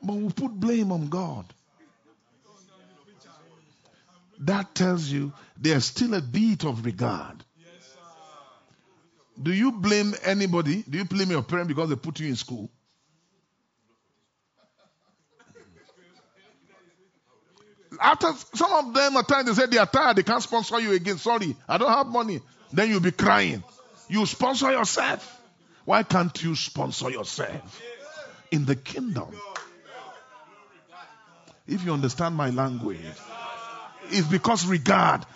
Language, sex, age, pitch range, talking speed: English, male, 50-69, 150-230 Hz, 125 wpm